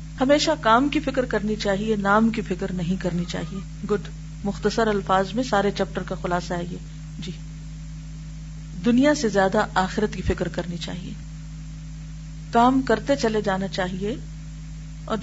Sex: female